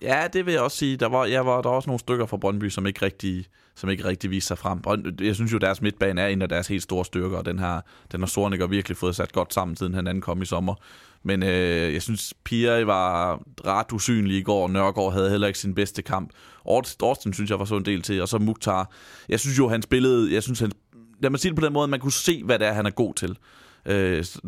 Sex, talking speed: male, 270 wpm